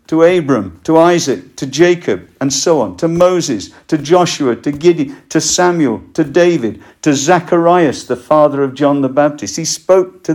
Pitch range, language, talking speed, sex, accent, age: 105-155 Hz, English, 175 wpm, male, British, 50-69